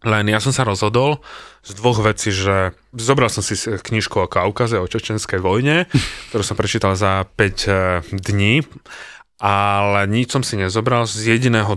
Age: 30-49